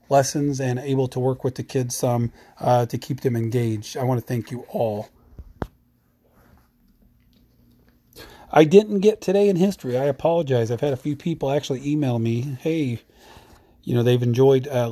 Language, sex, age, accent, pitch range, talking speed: English, male, 40-59, American, 120-150 Hz, 170 wpm